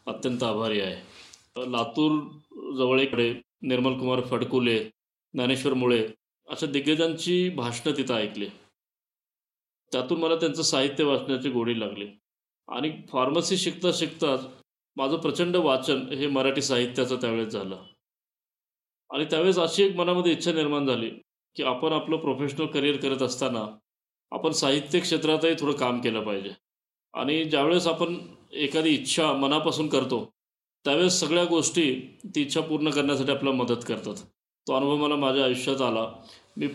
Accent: native